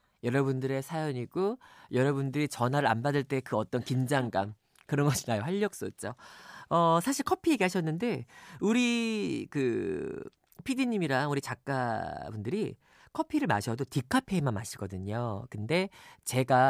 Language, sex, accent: Korean, male, native